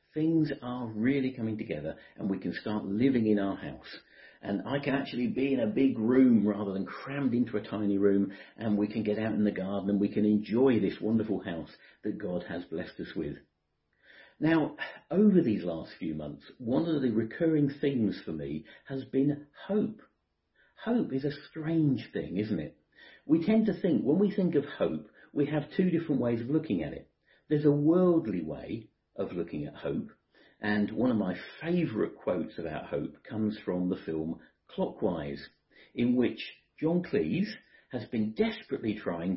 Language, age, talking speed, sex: English, 50-69, 185 wpm, male